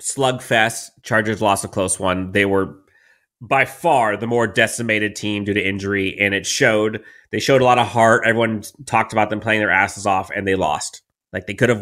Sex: male